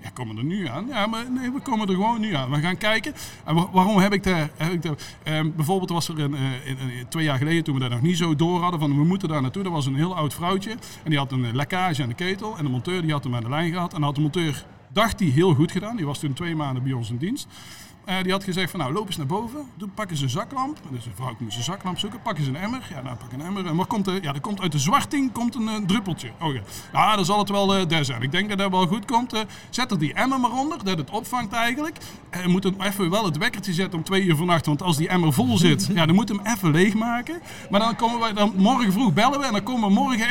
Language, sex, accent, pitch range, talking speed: Dutch, male, Dutch, 150-210 Hz, 300 wpm